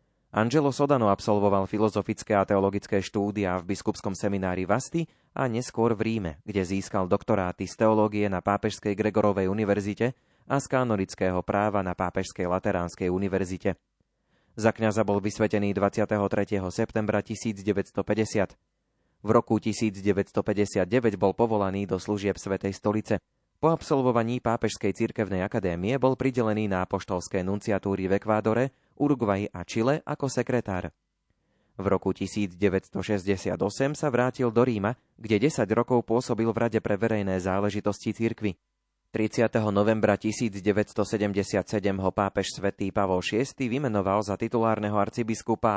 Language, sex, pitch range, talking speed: Slovak, male, 100-115 Hz, 125 wpm